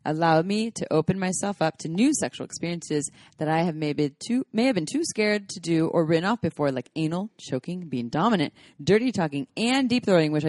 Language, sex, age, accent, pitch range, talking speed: English, female, 20-39, American, 160-210 Hz, 210 wpm